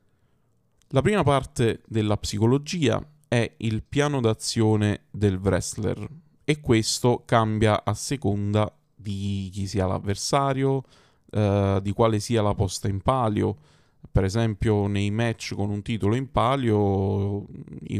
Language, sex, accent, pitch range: Italian, male, native, 100-125 Hz